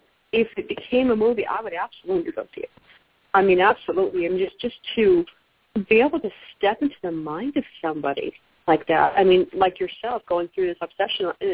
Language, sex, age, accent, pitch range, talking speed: English, female, 40-59, American, 190-250 Hz, 215 wpm